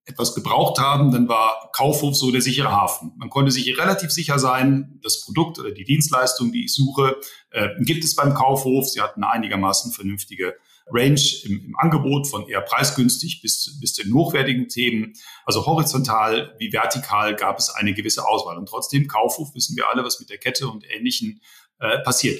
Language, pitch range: German, 120-150 Hz